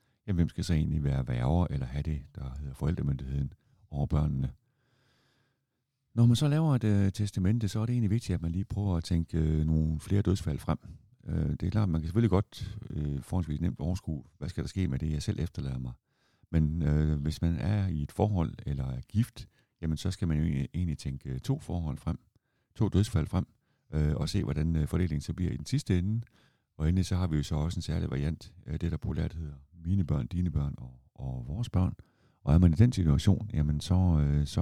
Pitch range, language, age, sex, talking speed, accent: 75-100 Hz, Danish, 60-79, male, 225 wpm, native